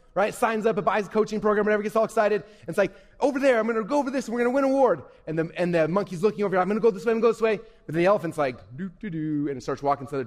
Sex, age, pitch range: male, 20-39, 160-240 Hz